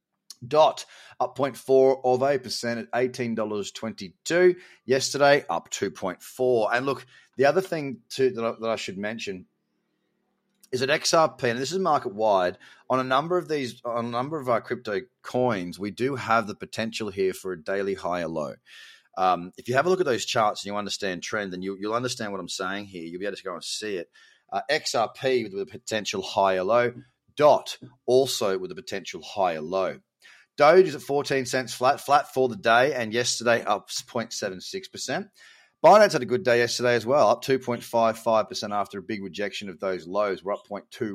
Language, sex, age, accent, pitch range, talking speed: English, male, 30-49, Australian, 115-140 Hz, 190 wpm